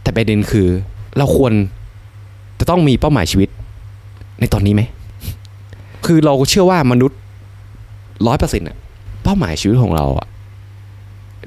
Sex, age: male, 20-39